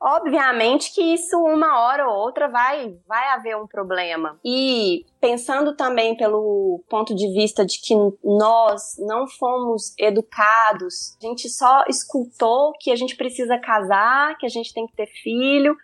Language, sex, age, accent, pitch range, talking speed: Portuguese, female, 20-39, Brazilian, 205-270 Hz, 155 wpm